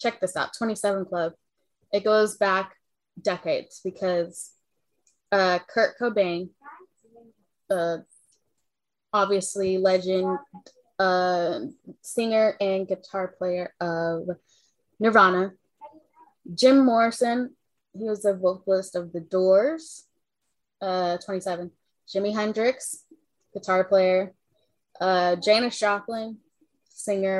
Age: 10-29